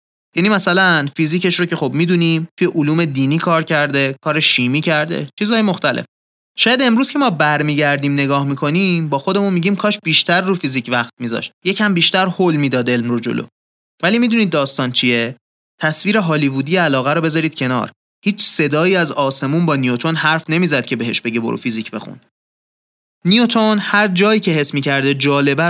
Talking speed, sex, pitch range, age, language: 170 wpm, male, 140-190 Hz, 30-49, Persian